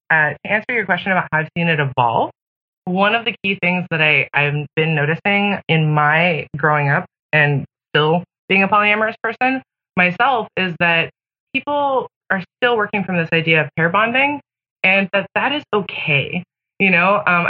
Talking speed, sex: 175 wpm, female